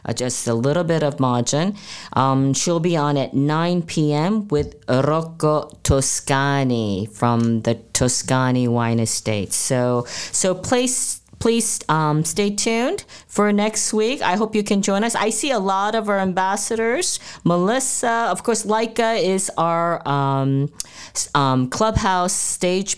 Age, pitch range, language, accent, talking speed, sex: 40-59, 155-220 Hz, English, American, 145 wpm, female